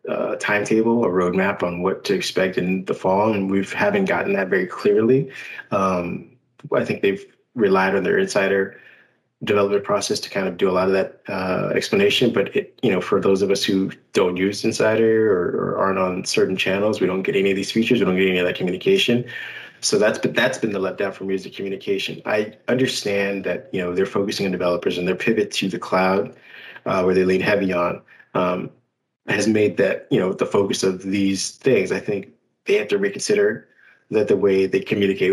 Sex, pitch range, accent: male, 95-130 Hz, American